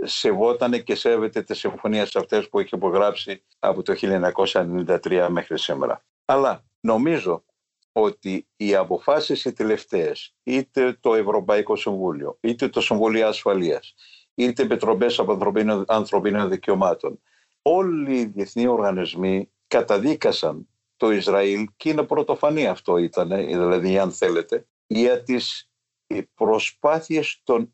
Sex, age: male, 60-79